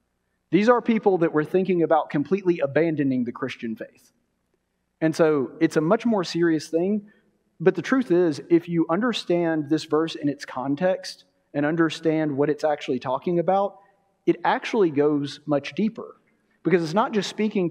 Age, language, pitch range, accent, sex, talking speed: 30-49, English, 145-185 Hz, American, male, 165 wpm